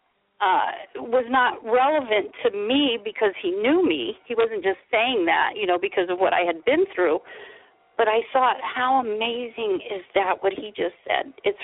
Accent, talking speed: American, 185 wpm